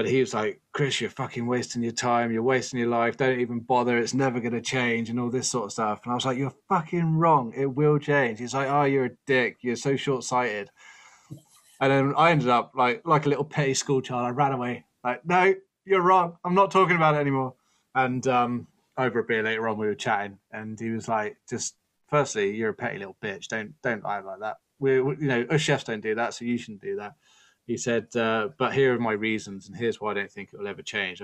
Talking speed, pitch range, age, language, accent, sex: 250 wpm, 115-140 Hz, 20-39, English, British, male